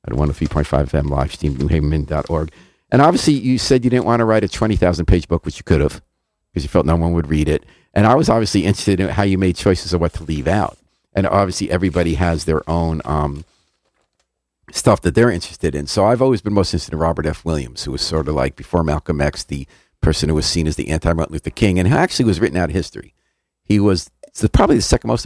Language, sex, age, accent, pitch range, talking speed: English, male, 50-69, American, 85-110 Hz, 245 wpm